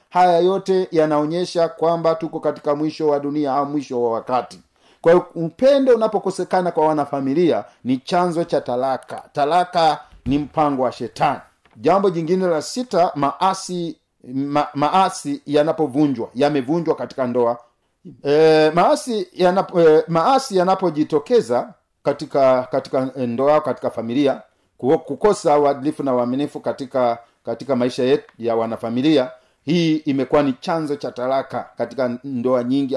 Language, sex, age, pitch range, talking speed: Swahili, male, 50-69, 130-175 Hz, 125 wpm